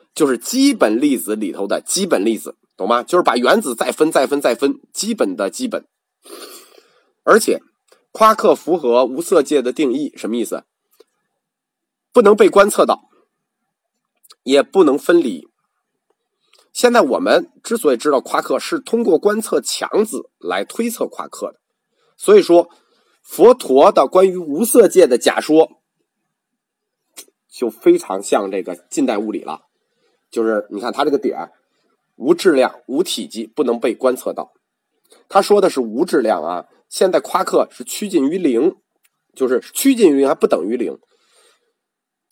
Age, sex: 30-49, male